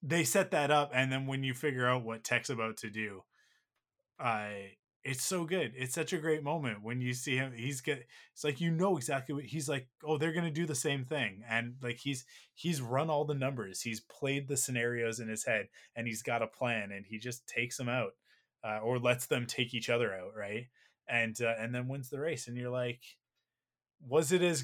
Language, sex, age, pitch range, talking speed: English, male, 20-39, 115-140 Hz, 230 wpm